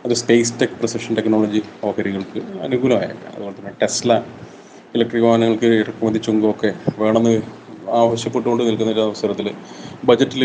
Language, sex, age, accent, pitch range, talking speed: Malayalam, male, 30-49, native, 110-125 Hz, 110 wpm